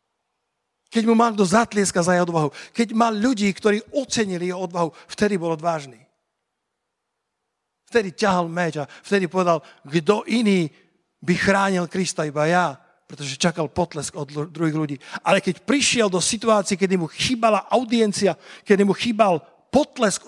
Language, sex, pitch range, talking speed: Slovak, male, 160-205 Hz, 150 wpm